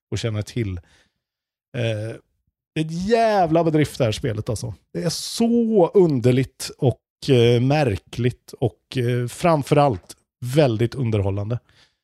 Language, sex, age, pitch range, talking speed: Swedish, male, 30-49, 120-170 Hz, 100 wpm